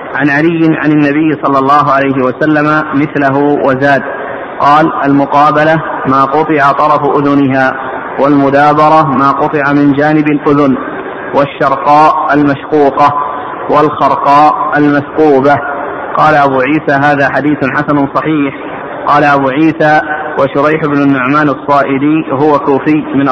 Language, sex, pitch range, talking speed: Arabic, male, 140-150 Hz, 110 wpm